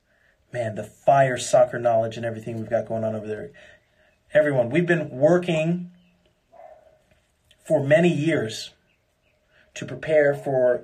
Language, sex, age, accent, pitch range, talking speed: English, male, 30-49, American, 125-170 Hz, 125 wpm